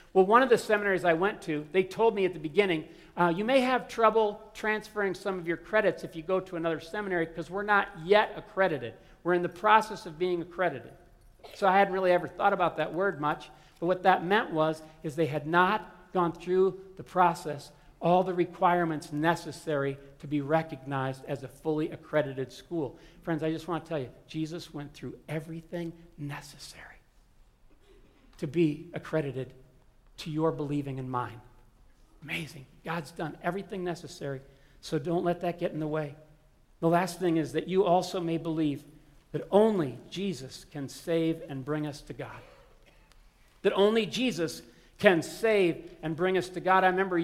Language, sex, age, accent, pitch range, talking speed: English, male, 50-69, American, 155-185 Hz, 180 wpm